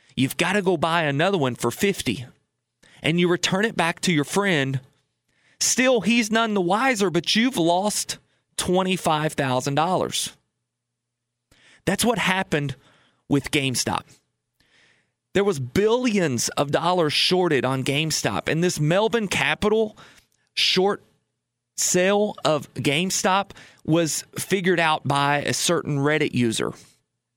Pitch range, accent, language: 140-195 Hz, American, English